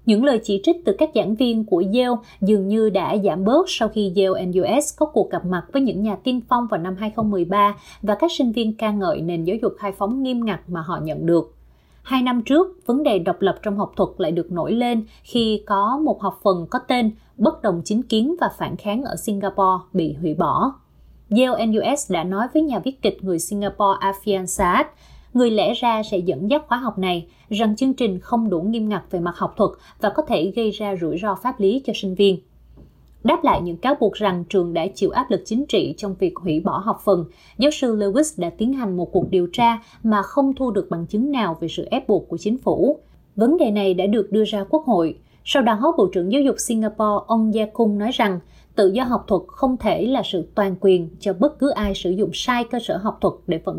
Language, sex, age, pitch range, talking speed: Vietnamese, female, 20-39, 185-240 Hz, 235 wpm